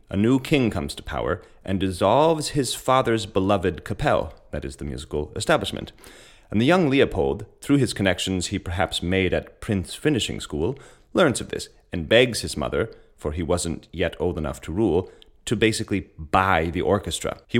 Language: English